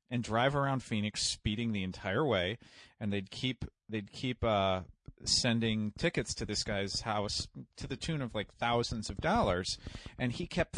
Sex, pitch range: male, 100-125 Hz